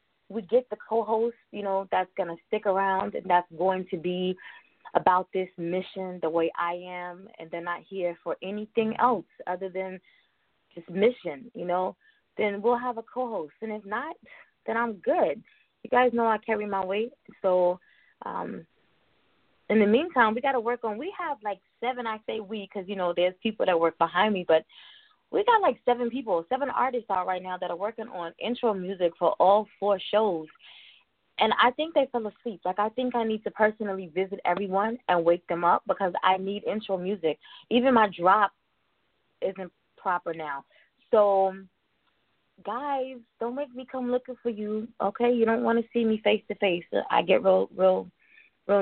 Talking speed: 190 wpm